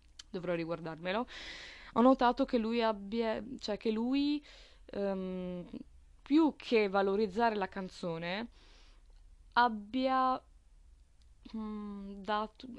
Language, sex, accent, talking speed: Italian, female, native, 90 wpm